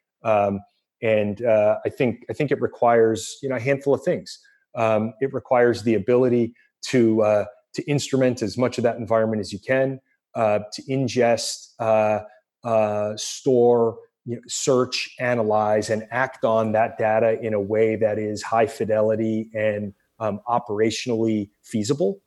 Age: 30-49